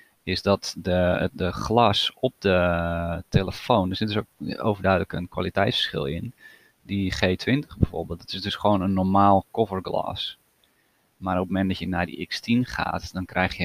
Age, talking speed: 30-49, 170 wpm